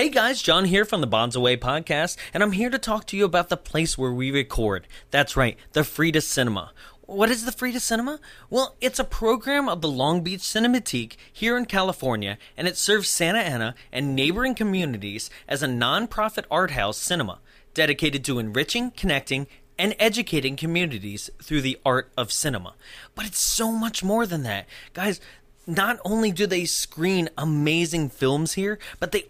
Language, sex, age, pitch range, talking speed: English, male, 20-39, 130-200 Hz, 180 wpm